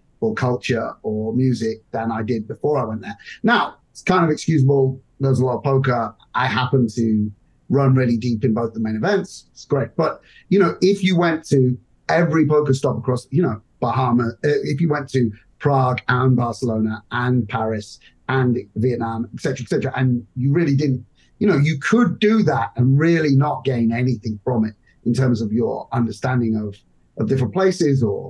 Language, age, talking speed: English, 30-49, 190 wpm